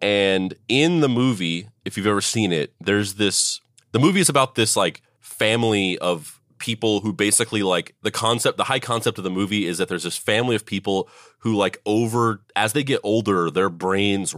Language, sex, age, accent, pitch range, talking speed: English, male, 30-49, American, 95-120 Hz, 195 wpm